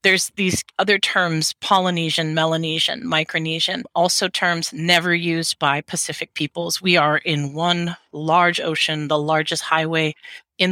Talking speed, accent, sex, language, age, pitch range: 135 wpm, American, female, English, 30-49, 155-180 Hz